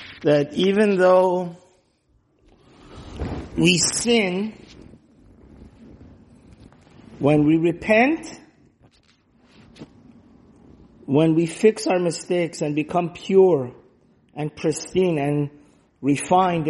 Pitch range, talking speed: 155-190 Hz, 70 wpm